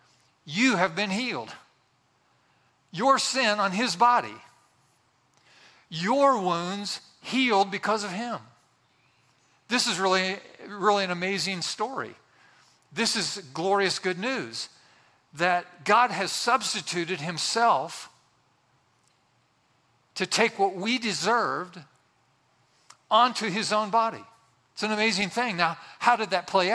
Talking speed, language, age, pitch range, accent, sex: 110 wpm, English, 50-69, 180-230 Hz, American, male